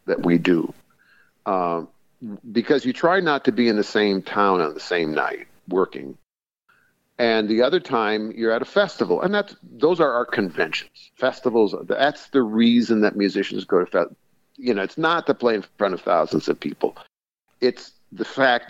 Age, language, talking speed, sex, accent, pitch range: 50-69, English, 180 wpm, male, American, 100-125 Hz